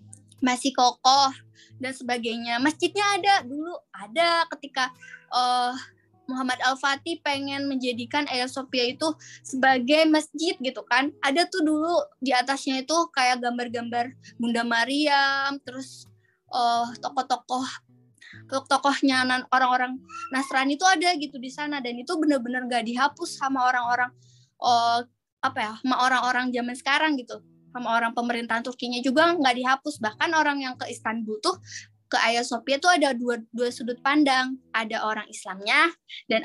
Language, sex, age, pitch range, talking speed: Indonesian, female, 20-39, 240-295 Hz, 135 wpm